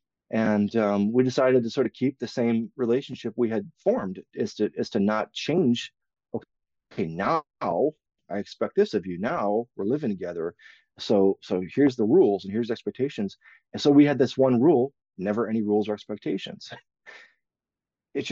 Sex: male